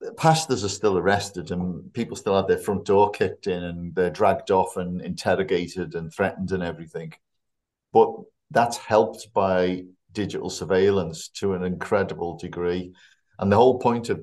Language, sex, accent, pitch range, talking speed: English, male, British, 90-105 Hz, 160 wpm